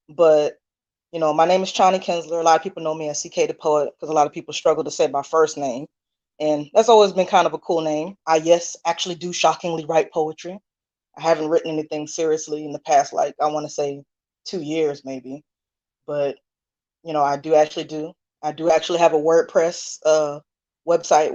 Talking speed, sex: 215 wpm, female